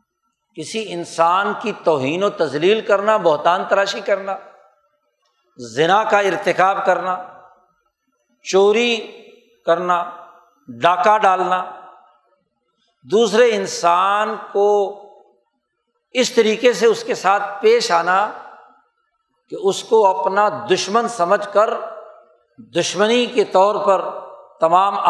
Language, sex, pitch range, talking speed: Urdu, male, 175-220 Hz, 100 wpm